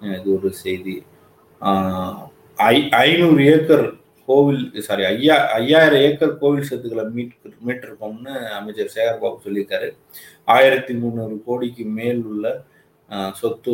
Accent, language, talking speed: native, Tamil, 110 wpm